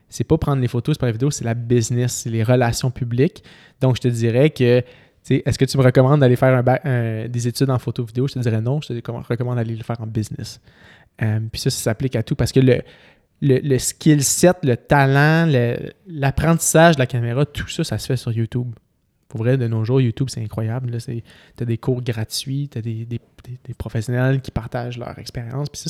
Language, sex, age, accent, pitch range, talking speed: French, male, 20-39, Canadian, 115-135 Hz, 240 wpm